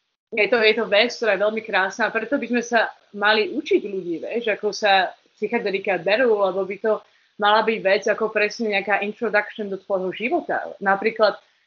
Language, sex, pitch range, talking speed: Slovak, female, 195-225 Hz, 190 wpm